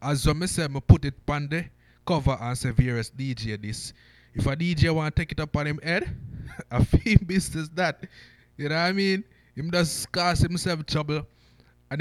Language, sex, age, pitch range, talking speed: English, male, 20-39, 110-160 Hz, 195 wpm